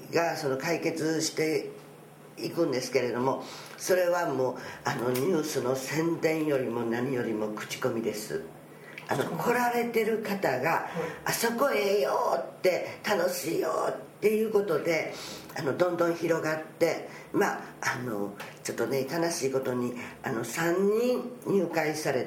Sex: female